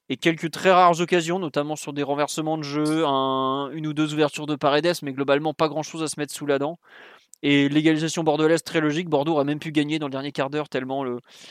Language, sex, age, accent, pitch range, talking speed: French, male, 20-39, French, 145-165 Hz, 235 wpm